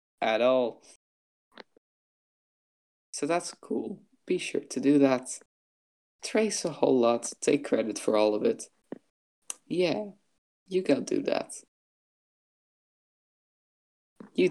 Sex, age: male, 20-39